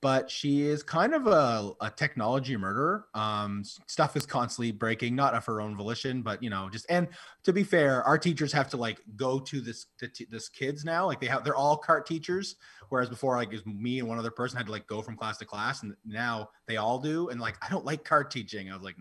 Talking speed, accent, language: 240 wpm, American, English